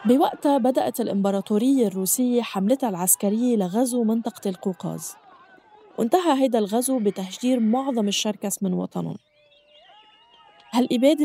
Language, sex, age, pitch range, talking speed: Arabic, female, 20-39, 195-250 Hz, 95 wpm